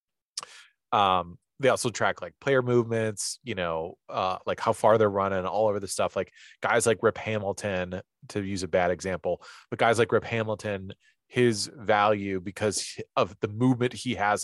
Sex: male